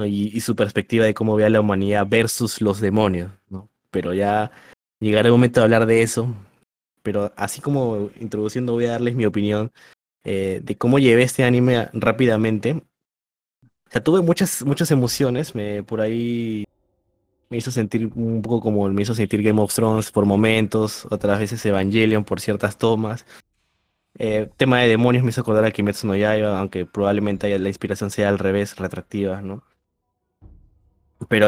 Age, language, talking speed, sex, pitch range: 20-39, Spanish, 170 wpm, male, 100-120 Hz